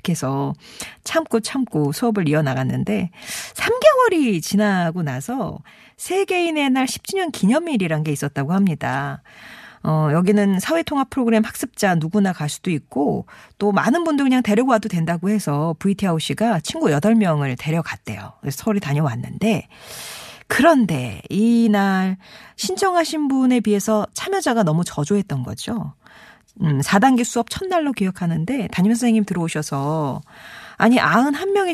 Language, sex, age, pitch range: Korean, female, 40-59, 170-265 Hz